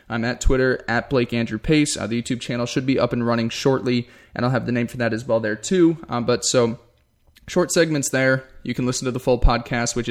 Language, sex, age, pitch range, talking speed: English, male, 10-29, 115-130 Hz, 250 wpm